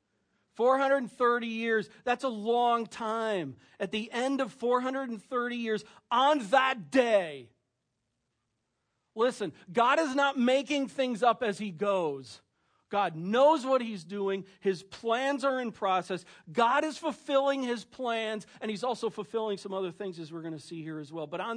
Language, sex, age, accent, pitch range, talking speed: English, male, 40-59, American, 165-235 Hz, 155 wpm